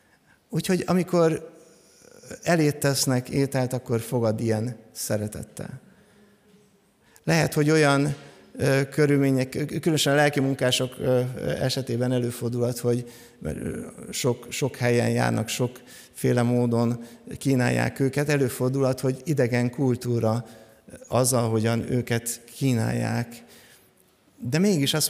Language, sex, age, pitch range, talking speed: Hungarian, male, 50-69, 120-145 Hz, 90 wpm